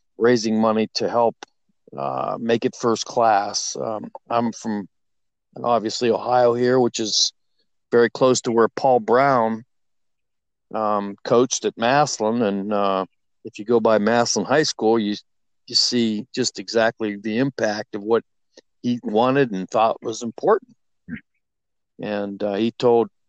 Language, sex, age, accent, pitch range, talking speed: English, male, 50-69, American, 105-120 Hz, 140 wpm